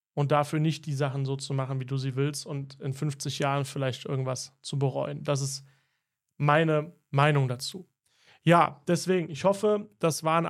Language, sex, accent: German, male, German